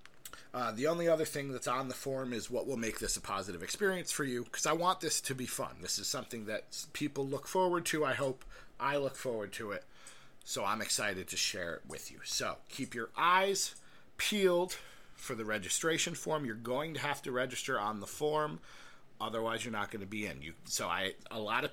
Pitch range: 115-155 Hz